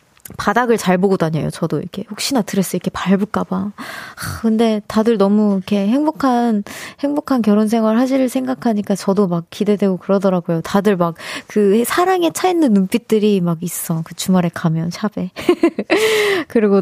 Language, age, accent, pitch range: Korean, 20-39, native, 195-290 Hz